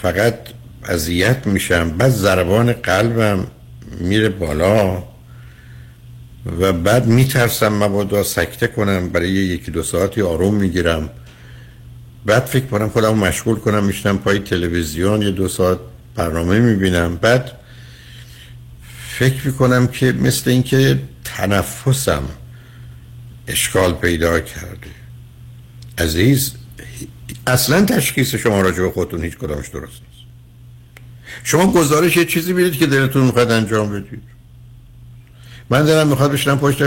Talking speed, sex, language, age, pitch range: 110 wpm, male, Persian, 60-79, 100-125 Hz